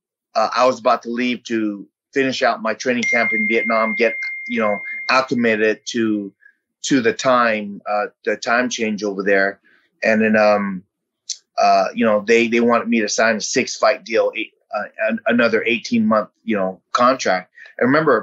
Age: 30-49